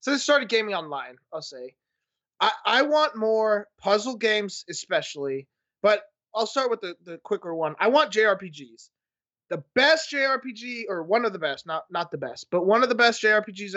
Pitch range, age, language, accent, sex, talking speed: 165-210 Hz, 20-39, English, American, male, 185 wpm